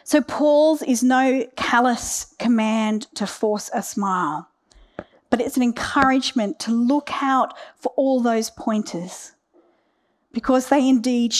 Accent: Australian